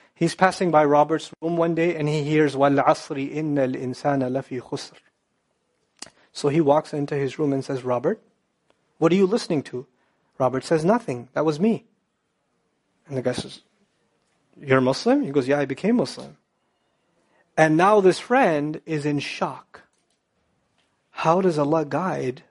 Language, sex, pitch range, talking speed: English, male, 145-200 Hz, 155 wpm